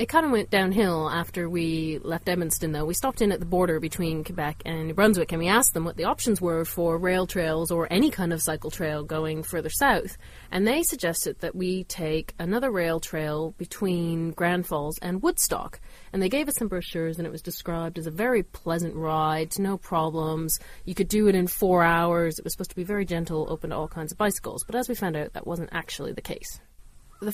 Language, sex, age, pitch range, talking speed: English, female, 30-49, 160-190 Hz, 225 wpm